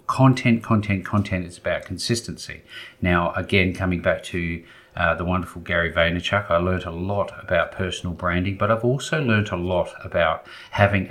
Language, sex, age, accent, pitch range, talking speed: English, male, 40-59, Australian, 90-110 Hz, 170 wpm